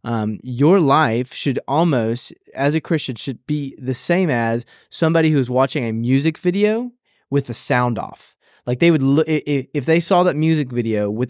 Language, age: English, 20-39